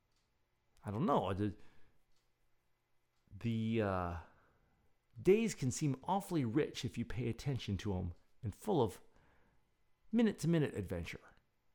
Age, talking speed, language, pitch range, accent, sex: 40-59, 100 wpm, English, 100-125 Hz, American, male